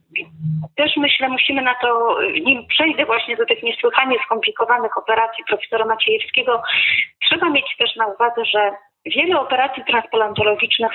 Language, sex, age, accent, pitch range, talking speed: Polish, female, 30-49, native, 210-275 Hz, 130 wpm